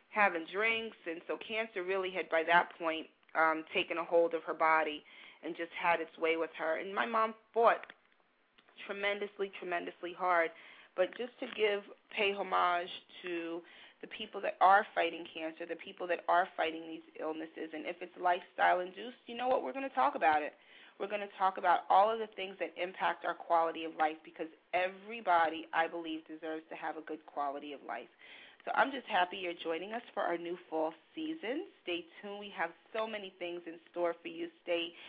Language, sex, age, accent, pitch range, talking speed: English, female, 30-49, American, 165-210 Hz, 195 wpm